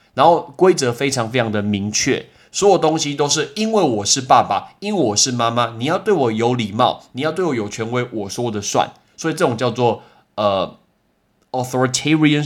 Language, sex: Chinese, male